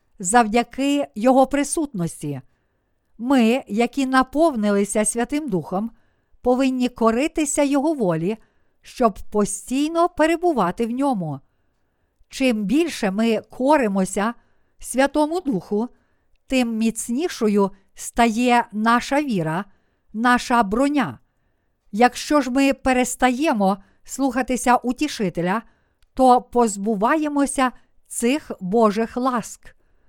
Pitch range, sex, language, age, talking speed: 210-270 Hz, female, Ukrainian, 50-69, 80 wpm